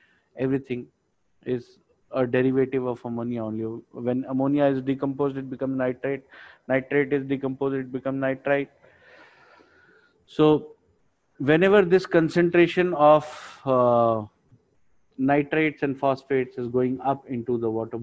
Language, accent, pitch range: Hindi, native, 120-140 Hz